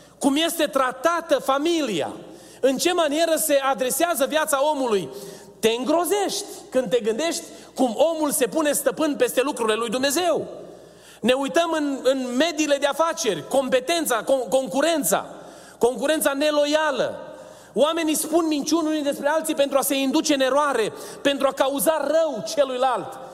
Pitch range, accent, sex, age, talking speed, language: 260-320 Hz, native, male, 30-49, 135 wpm, Romanian